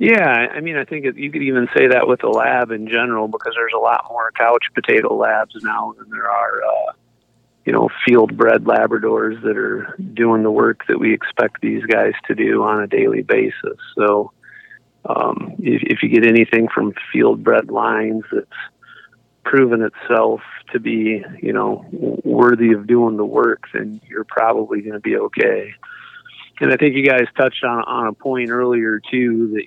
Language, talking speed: English, 180 wpm